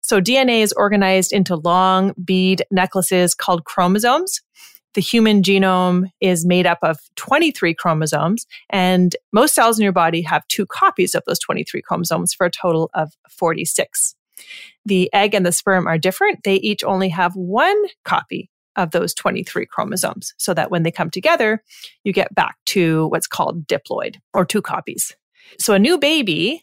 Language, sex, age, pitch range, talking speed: English, female, 30-49, 170-215 Hz, 165 wpm